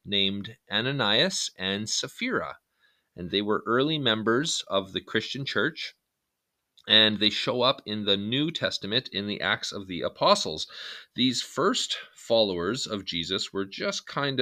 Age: 40-59